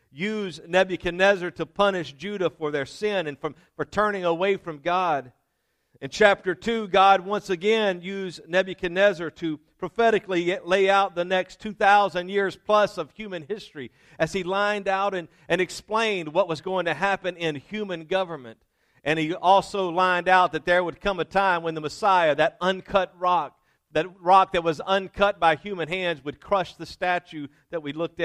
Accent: American